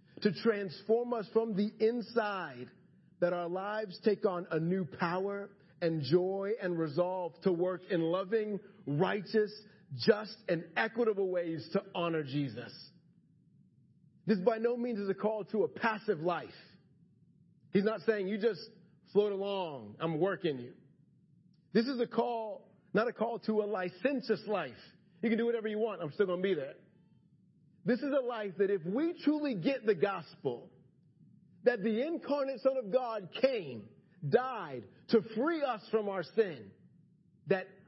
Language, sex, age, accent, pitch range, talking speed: English, male, 40-59, American, 170-220 Hz, 160 wpm